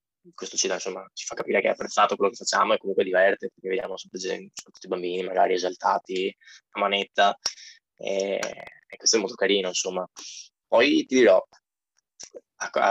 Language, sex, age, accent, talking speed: Italian, male, 20-39, native, 160 wpm